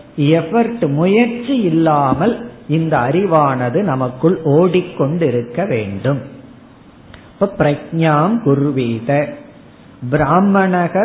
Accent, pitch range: native, 145-185 Hz